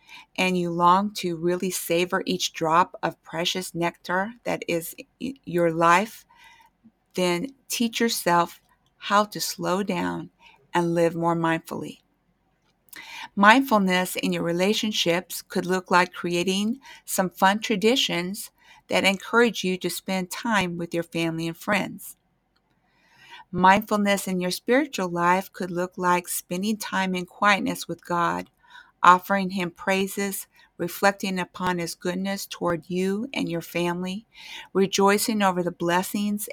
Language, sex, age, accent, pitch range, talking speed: English, female, 50-69, American, 175-215 Hz, 130 wpm